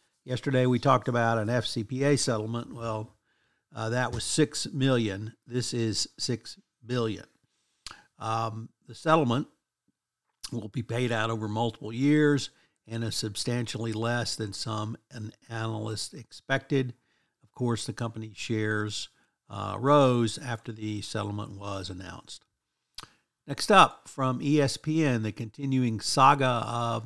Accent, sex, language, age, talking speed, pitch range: American, male, English, 60-79, 120 wpm, 110-125 Hz